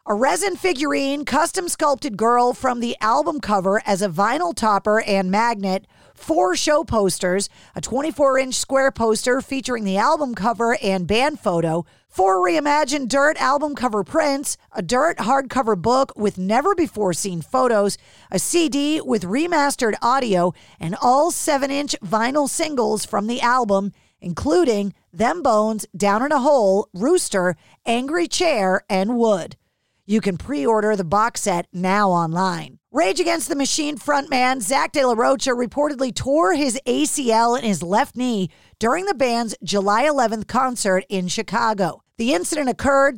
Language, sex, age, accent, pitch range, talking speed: English, female, 40-59, American, 200-280 Hz, 145 wpm